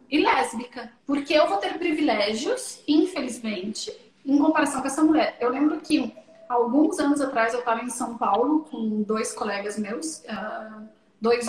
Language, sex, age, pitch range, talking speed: Portuguese, female, 30-49, 240-315 Hz, 155 wpm